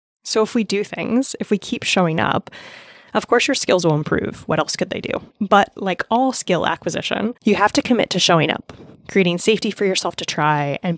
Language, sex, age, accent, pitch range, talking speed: English, female, 30-49, American, 165-215 Hz, 220 wpm